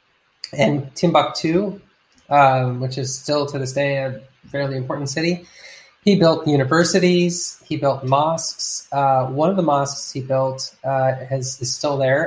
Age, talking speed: 20-39, 150 wpm